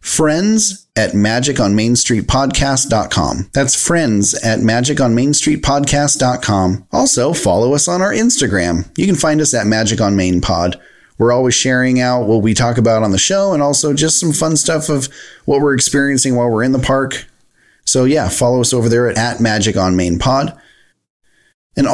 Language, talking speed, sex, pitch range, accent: English, 185 wpm, male, 105-145 Hz, American